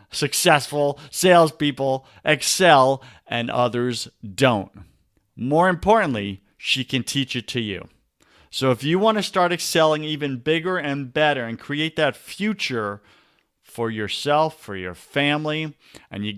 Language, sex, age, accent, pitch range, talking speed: English, male, 50-69, American, 115-155 Hz, 130 wpm